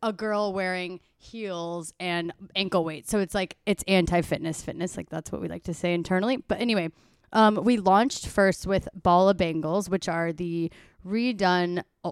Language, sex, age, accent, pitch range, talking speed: English, female, 20-39, American, 175-205 Hz, 175 wpm